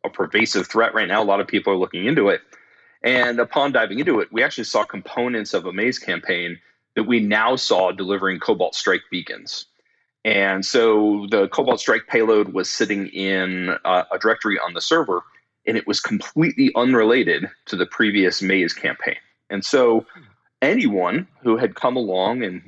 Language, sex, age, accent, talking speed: English, male, 30-49, American, 175 wpm